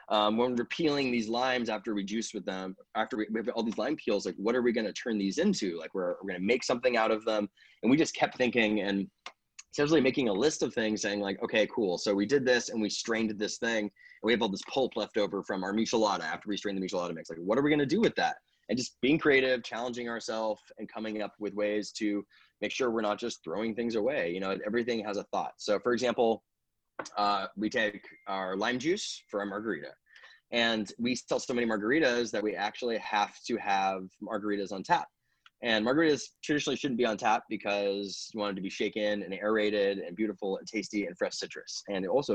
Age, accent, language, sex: 20-39, American, English, male